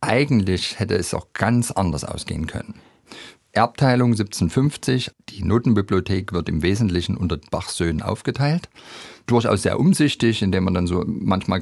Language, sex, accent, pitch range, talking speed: German, male, German, 90-115 Hz, 140 wpm